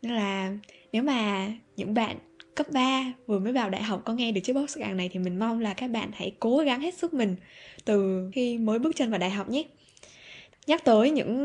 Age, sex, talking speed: 10-29, female, 225 wpm